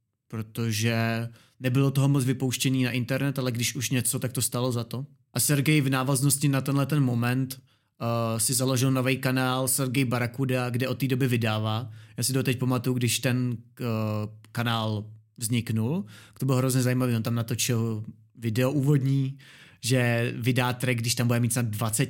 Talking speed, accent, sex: 175 wpm, native, male